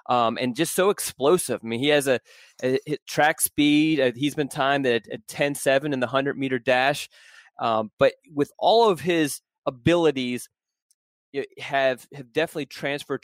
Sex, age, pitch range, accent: male, 30-49, 130-155 Hz, American